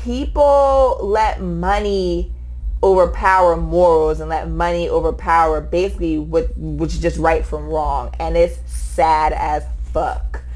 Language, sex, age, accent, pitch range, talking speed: English, female, 20-39, American, 160-200 Hz, 125 wpm